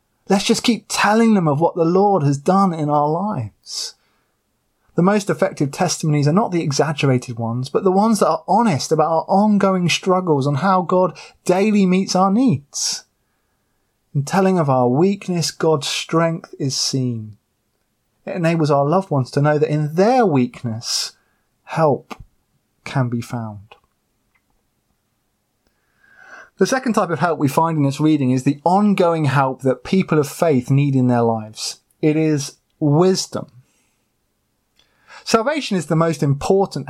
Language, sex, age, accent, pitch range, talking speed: English, male, 30-49, British, 135-190 Hz, 155 wpm